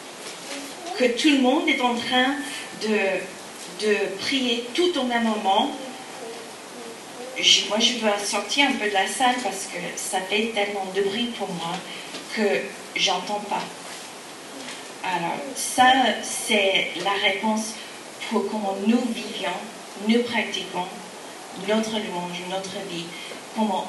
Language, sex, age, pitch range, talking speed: French, female, 40-59, 205-265 Hz, 130 wpm